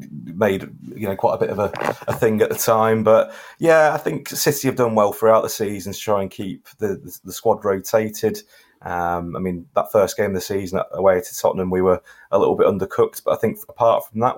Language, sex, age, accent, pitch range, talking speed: English, male, 30-49, British, 90-110 Hz, 240 wpm